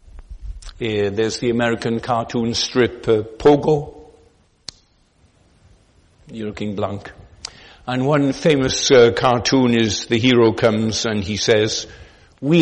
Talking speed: 110 wpm